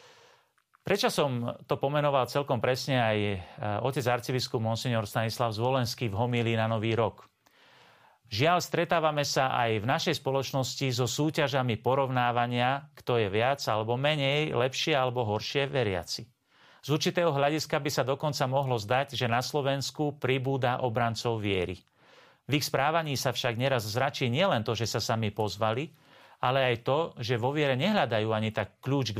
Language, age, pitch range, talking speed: Slovak, 40-59, 115-135 Hz, 150 wpm